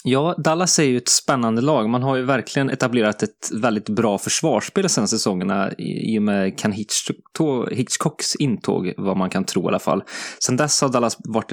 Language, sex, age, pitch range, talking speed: English, male, 20-39, 105-130 Hz, 200 wpm